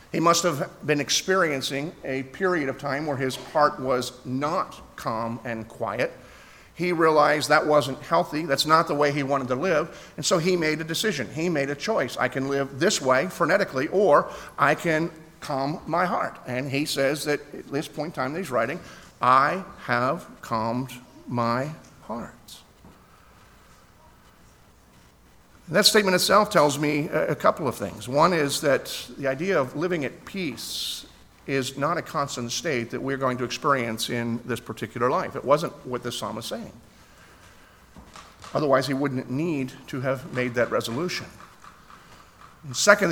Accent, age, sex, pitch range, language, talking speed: American, 50-69, male, 125-155 Hz, English, 165 wpm